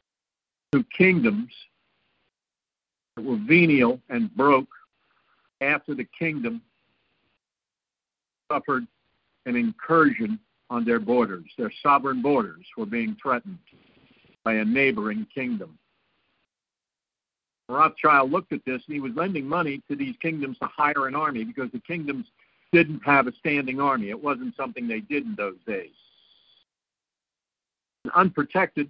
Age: 60-79